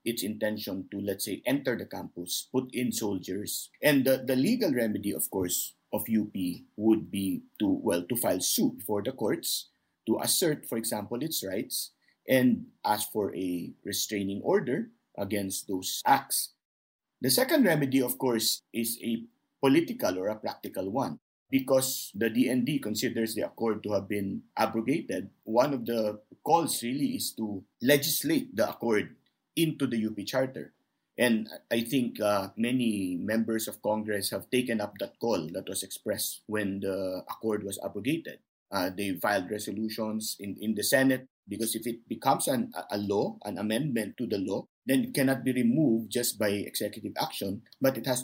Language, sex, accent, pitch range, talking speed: English, male, Filipino, 105-130 Hz, 165 wpm